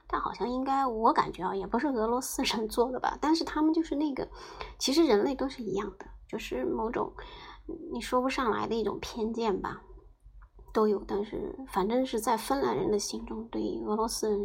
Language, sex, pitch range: Chinese, male, 210-330 Hz